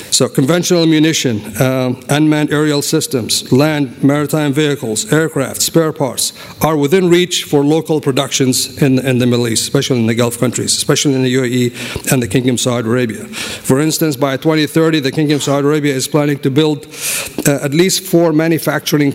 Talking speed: 180 wpm